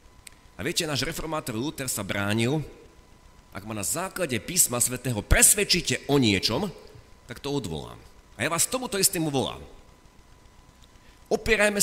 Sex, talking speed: male, 130 wpm